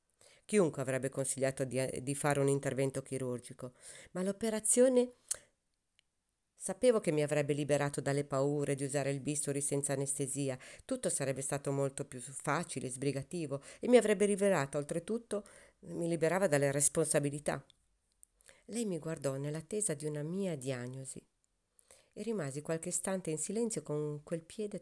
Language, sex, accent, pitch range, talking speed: Italian, female, native, 140-180 Hz, 140 wpm